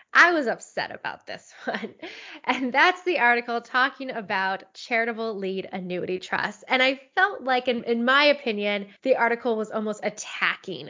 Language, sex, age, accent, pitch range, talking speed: English, female, 10-29, American, 200-250 Hz, 160 wpm